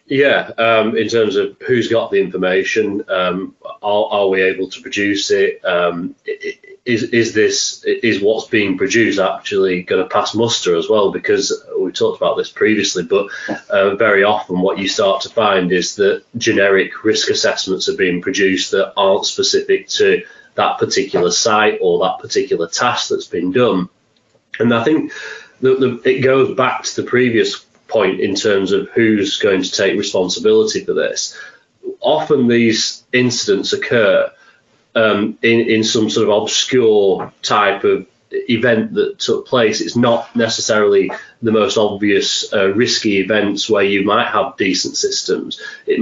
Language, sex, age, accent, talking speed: English, male, 30-49, British, 160 wpm